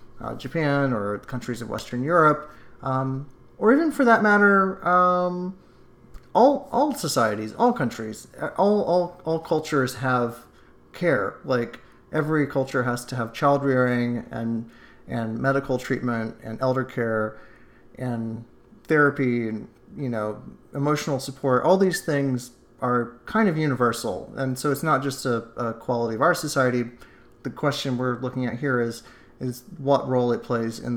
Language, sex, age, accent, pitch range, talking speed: English, male, 30-49, American, 120-145 Hz, 150 wpm